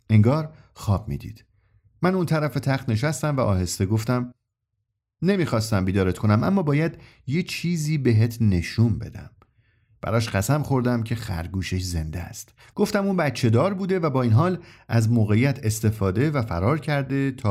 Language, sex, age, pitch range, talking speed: Persian, male, 50-69, 100-135 Hz, 150 wpm